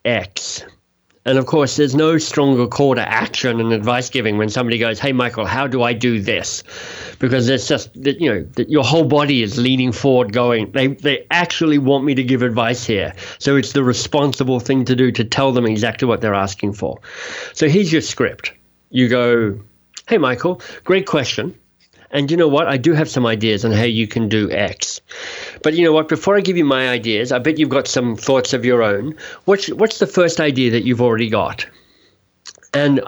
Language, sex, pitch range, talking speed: English, male, 120-150 Hz, 210 wpm